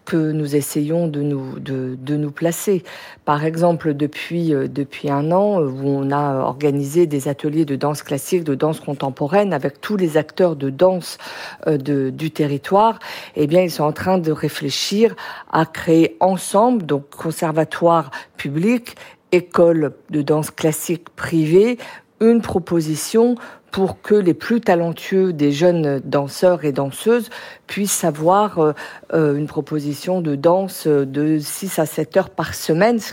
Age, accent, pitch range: 50-69, French, 150-190 Hz